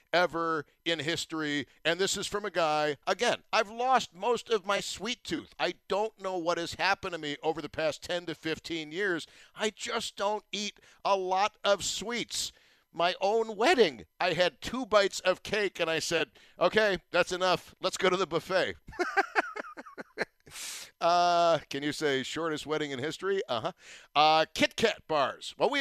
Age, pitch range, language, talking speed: 50-69, 150-195 Hz, English, 175 wpm